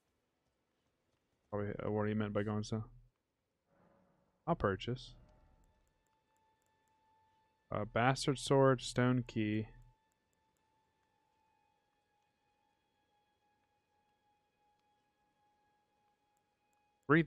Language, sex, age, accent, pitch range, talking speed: English, male, 20-39, American, 105-140 Hz, 55 wpm